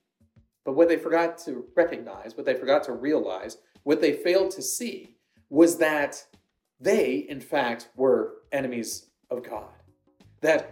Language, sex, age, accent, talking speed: English, male, 40-59, American, 145 wpm